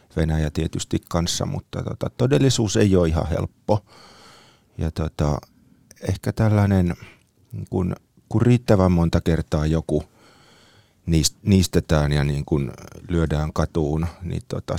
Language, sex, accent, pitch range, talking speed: Finnish, male, native, 80-100 Hz, 120 wpm